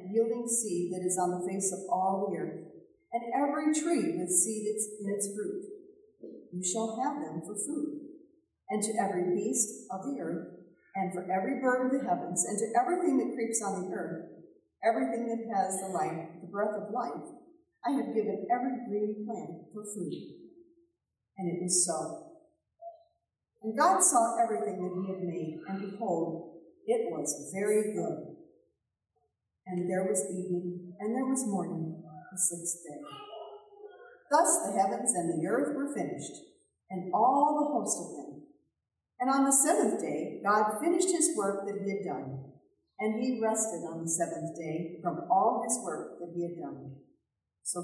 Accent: American